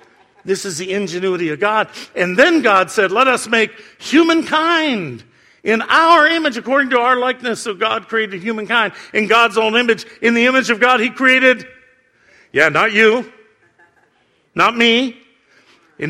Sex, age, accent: male, 50-69, American